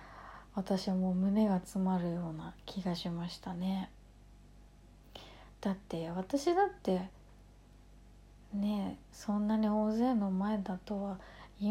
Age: 30-49